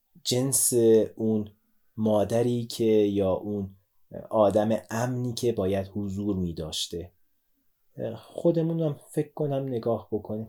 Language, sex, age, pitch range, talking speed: Persian, male, 30-49, 100-120 Hz, 95 wpm